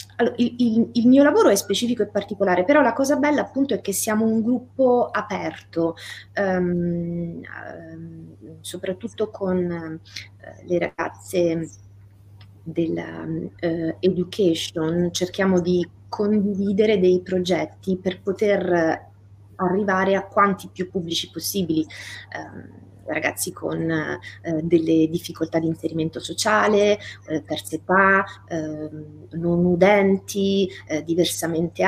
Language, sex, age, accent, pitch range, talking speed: Italian, female, 20-39, native, 160-200 Hz, 110 wpm